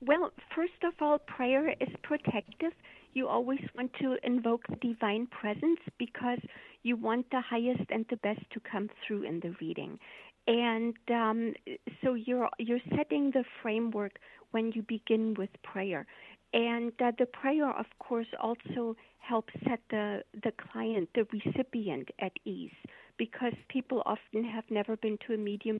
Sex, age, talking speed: female, 50-69, 155 wpm